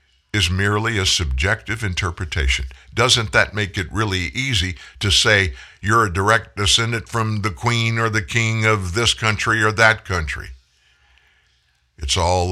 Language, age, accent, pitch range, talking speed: English, 60-79, American, 75-110 Hz, 150 wpm